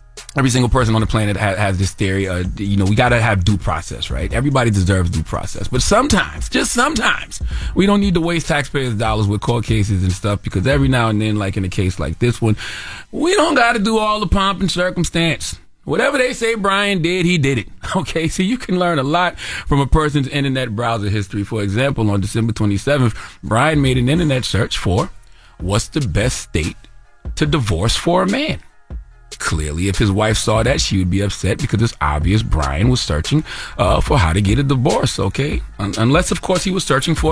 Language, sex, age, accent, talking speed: English, male, 30-49, American, 210 wpm